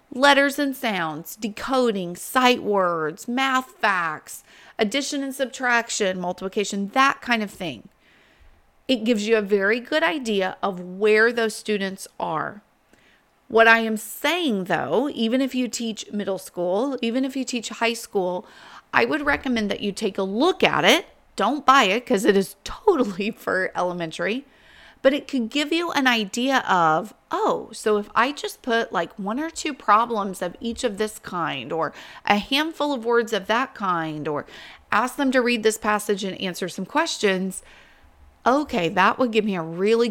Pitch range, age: 195-260 Hz, 40-59